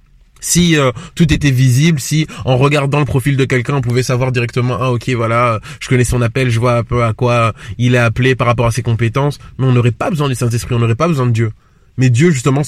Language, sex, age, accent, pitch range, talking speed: French, male, 20-39, French, 120-145 Hz, 250 wpm